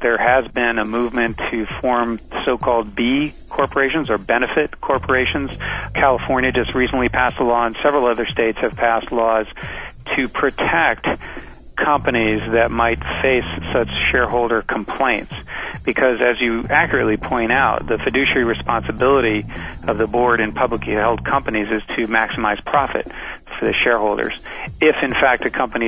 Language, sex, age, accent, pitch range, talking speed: English, male, 40-59, American, 110-130 Hz, 145 wpm